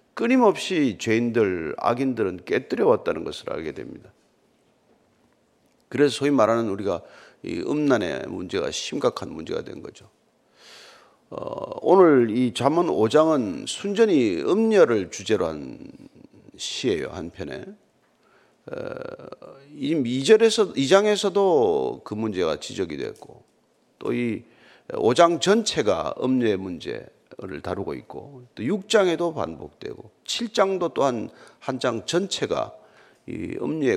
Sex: male